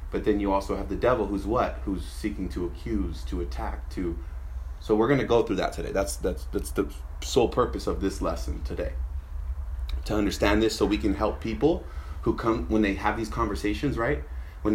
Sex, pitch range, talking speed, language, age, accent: male, 75-105 Hz, 210 wpm, English, 30-49, American